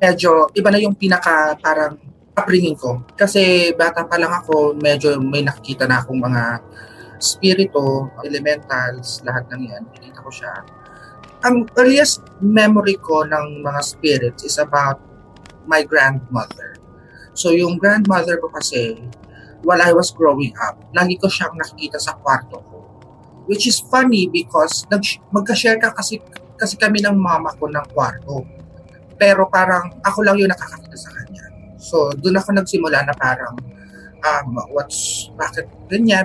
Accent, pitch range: native, 135-195 Hz